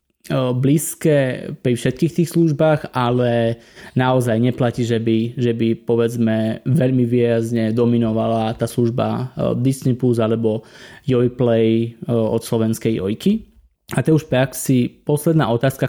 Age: 20-39